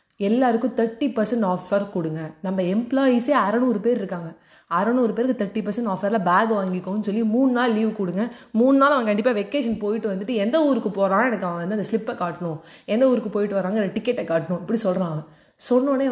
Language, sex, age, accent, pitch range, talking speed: Tamil, female, 20-39, native, 180-230 Hz, 175 wpm